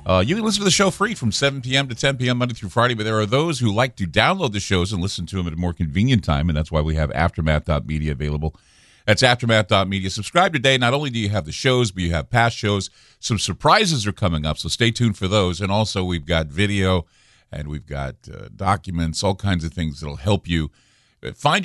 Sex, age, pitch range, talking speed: male, 50-69, 95-125 Hz, 245 wpm